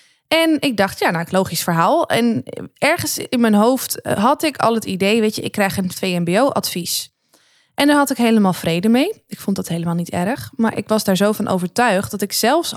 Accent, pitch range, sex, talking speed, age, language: Dutch, 180-240 Hz, female, 215 wpm, 20-39, Dutch